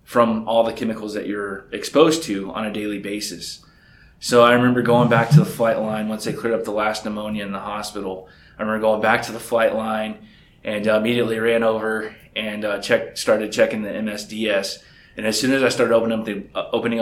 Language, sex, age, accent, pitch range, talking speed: English, male, 20-39, American, 105-120 Hz, 200 wpm